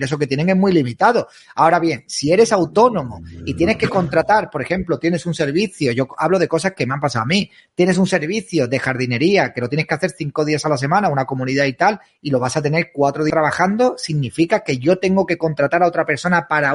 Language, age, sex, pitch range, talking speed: Spanish, 30-49, male, 140-190 Hz, 240 wpm